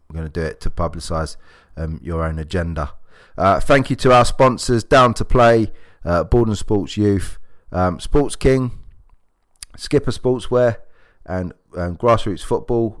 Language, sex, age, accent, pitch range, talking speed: English, male, 20-39, British, 85-105 Hz, 150 wpm